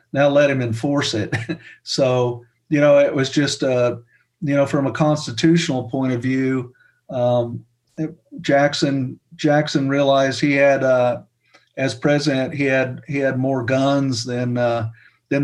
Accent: American